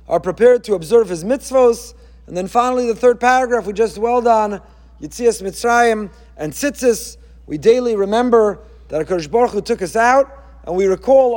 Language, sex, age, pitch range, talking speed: English, male, 30-49, 200-250 Hz, 175 wpm